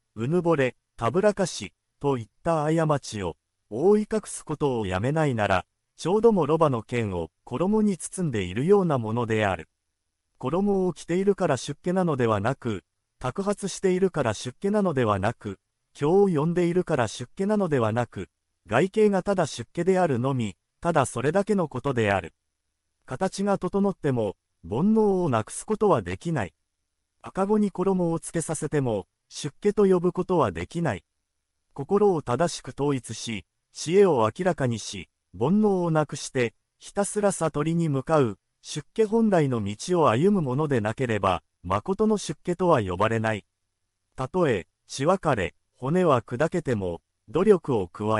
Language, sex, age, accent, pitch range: Japanese, male, 40-59, native, 110-180 Hz